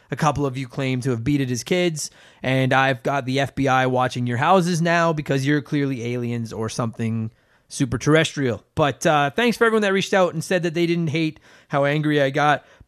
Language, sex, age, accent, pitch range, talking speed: English, male, 20-39, American, 130-175 Hz, 210 wpm